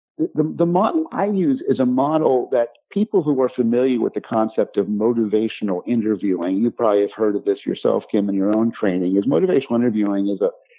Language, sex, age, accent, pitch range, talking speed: English, male, 50-69, American, 110-130 Hz, 200 wpm